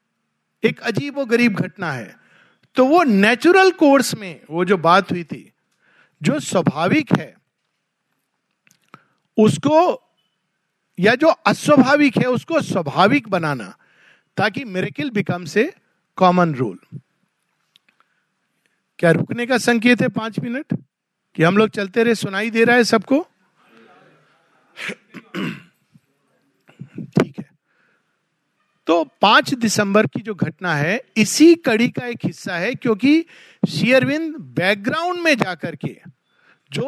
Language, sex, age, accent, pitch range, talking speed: Hindi, male, 50-69, native, 190-260 Hz, 115 wpm